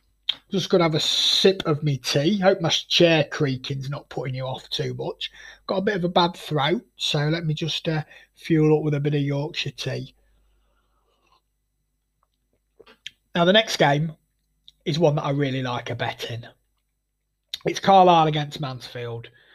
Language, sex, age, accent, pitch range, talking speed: English, male, 30-49, British, 135-165 Hz, 170 wpm